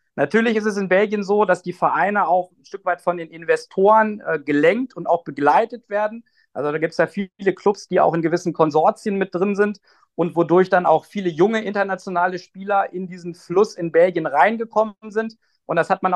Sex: male